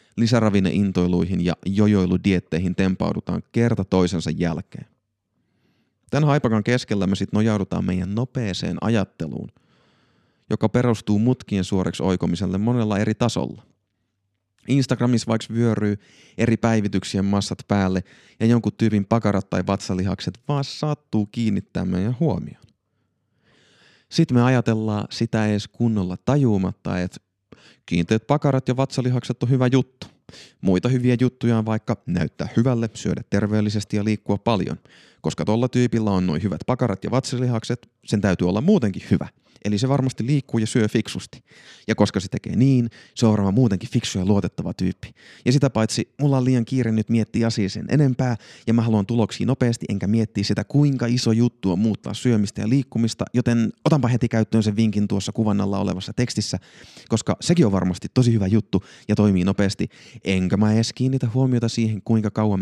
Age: 30-49